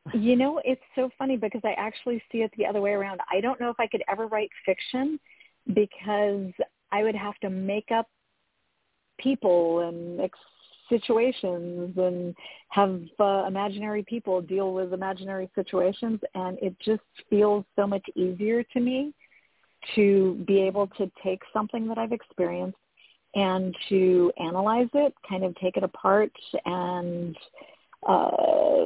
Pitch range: 180-220 Hz